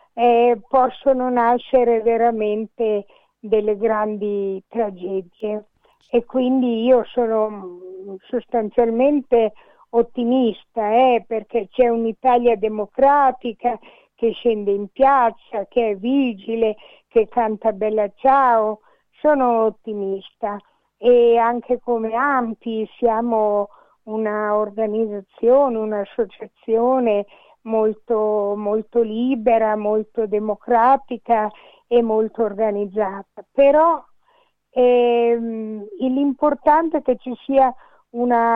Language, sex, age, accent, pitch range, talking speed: Italian, female, 50-69, native, 215-245 Hz, 80 wpm